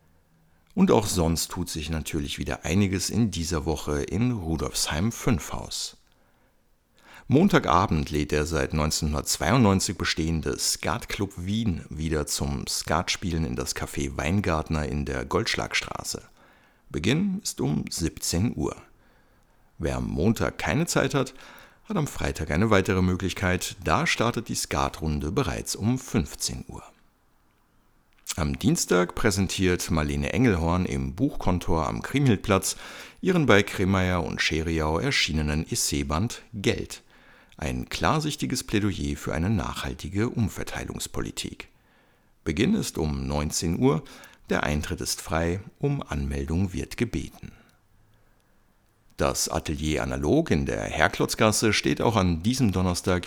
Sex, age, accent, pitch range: male, 60-79, German, 75-100 Hz